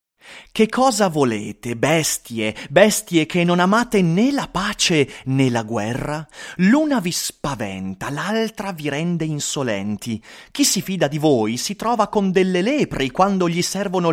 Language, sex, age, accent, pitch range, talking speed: Italian, male, 30-49, native, 145-225 Hz, 145 wpm